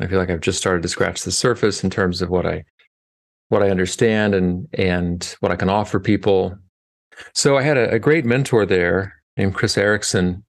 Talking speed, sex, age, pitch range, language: 205 wpm, male, 40-59, 90-105 Hz, English